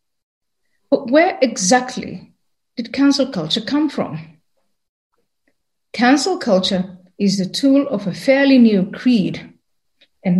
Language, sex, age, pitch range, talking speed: English, female, 50-69, 195-255 Hz, 110 wpm